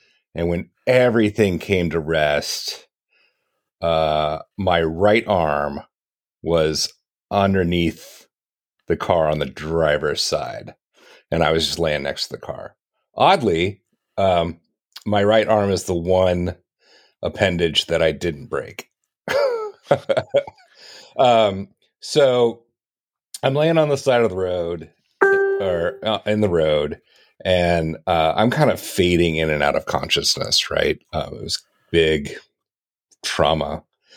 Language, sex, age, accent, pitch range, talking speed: English, male, 40-59, American, 80-105 Hz, 125 wpm